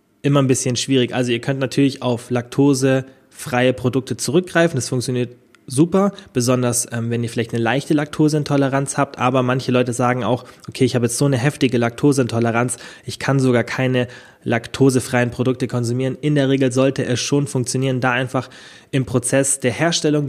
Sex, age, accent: male, 20-39, German